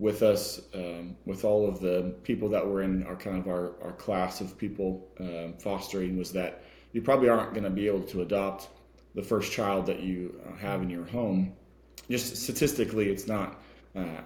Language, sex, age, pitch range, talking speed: English, male, 30-49, 90-110 Hz, 195 wpm